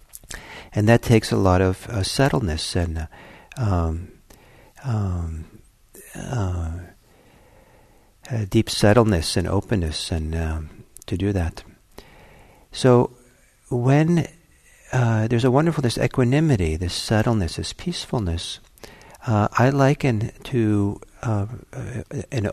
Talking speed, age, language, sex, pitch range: 110 wpm, 60-79, English, male, 90-120 Hz